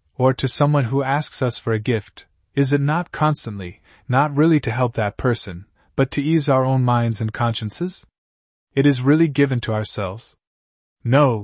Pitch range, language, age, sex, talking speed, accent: 110-140 Hz, English, 20-39, male, 180 wpm, American